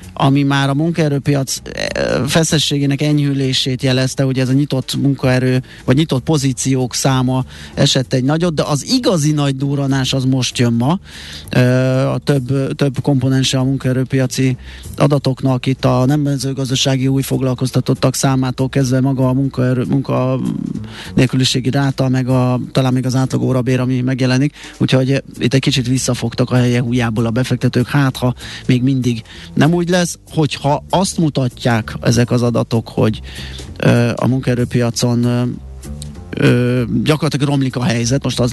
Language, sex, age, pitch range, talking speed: Hungarian, male, 30-49, 125-140 Hz, 140 wpm